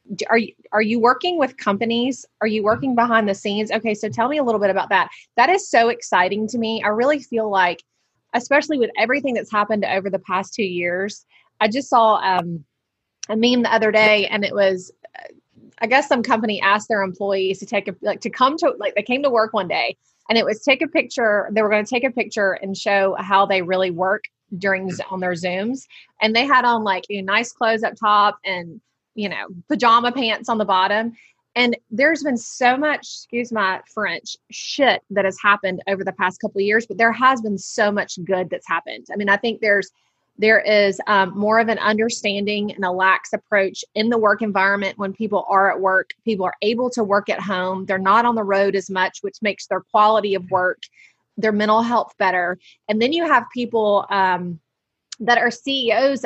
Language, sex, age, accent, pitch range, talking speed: English, female, 20-39, American, 195-235 Hz, 215 wpm